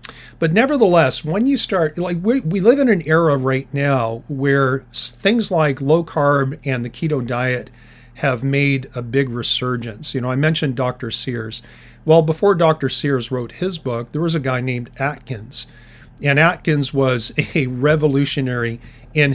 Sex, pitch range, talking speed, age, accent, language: male, 125-150 Hz, 165 wpm, 40-59, American, English